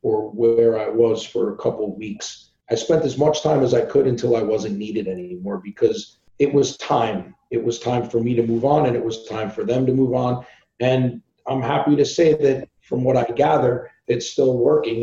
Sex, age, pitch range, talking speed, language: male, 40-59, 110-135 Hz, 225 wpm, English